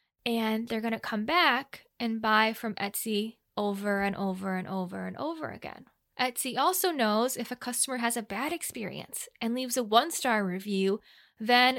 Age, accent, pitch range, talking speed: 10-29, American, 215-265 Hz, 175 wpm